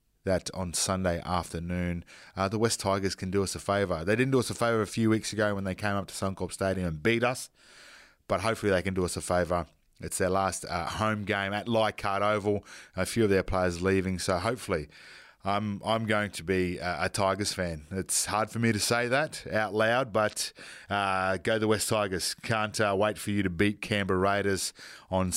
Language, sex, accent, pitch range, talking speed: English, male, Australian, 95-115 Hz, 220 wpm